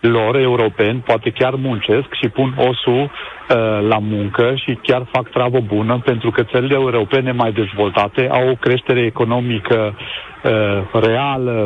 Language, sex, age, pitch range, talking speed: Romanian, male, 40-59, 120-150 Hz, 135 wpm